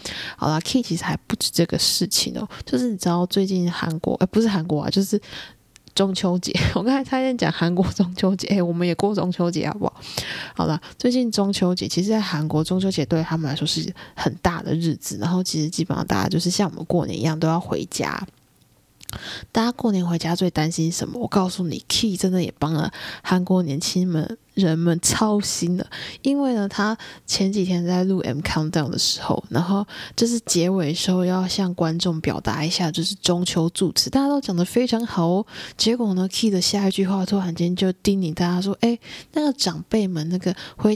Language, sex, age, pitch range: Chinese, female, 20-39, 170-205 Hz